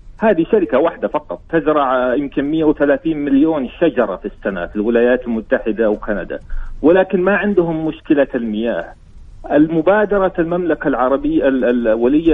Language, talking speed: Arabic, 115 wpm